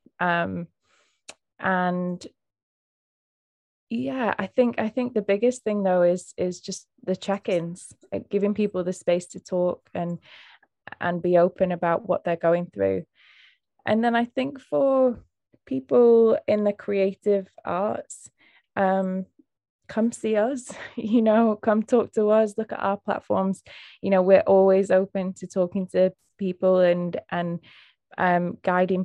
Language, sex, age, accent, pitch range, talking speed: English, female, 20-39, British, 180-215 Hz, 140 wpm